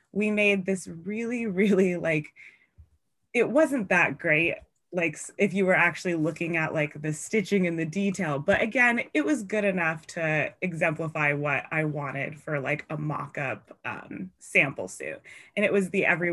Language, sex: English, female